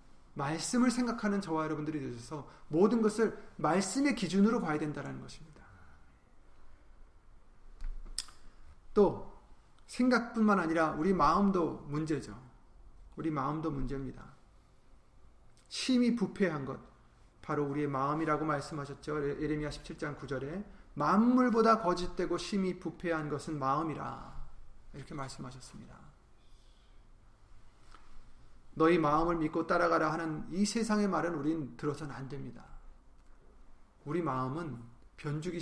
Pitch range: 135-190 Hz